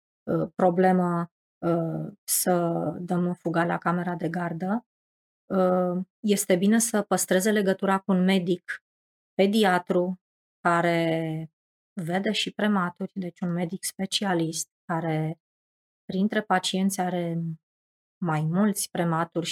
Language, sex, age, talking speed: Romanian, female, 20-39, 100 wpm